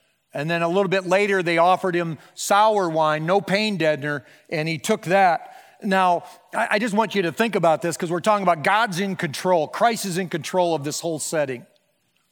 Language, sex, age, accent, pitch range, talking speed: English, male, 40-59, American, 170-225 Hz, 205 wpm